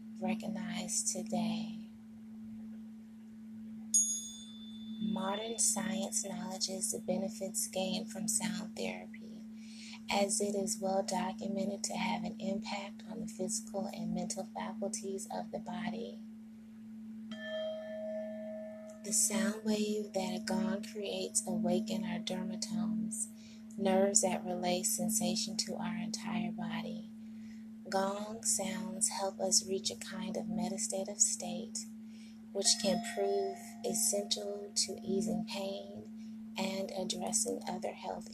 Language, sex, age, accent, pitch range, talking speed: English, female, 20-39, American, 205-220 Hz, 105 wpm